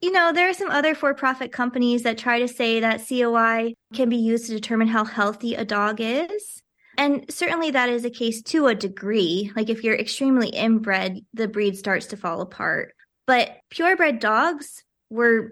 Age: 20-39